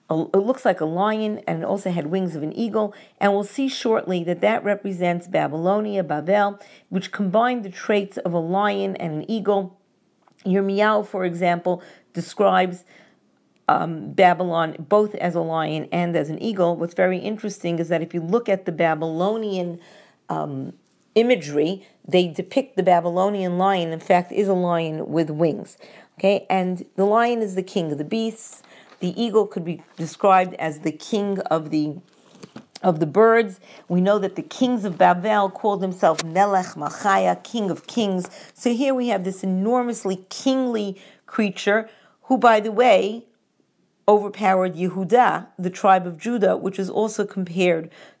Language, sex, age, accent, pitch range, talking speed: English, female, 50-69, American, 175-210 Hz, 165 wpm